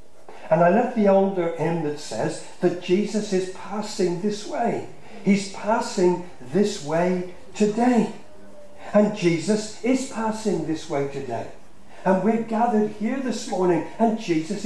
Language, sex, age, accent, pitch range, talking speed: English, male, 50-69, British, 180-225 Hz, 140 wpm